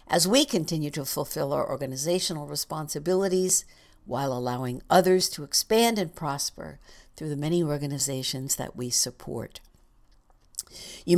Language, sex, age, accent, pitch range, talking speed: English, female, 60-79, American, 140-185 Hz, 125 wpm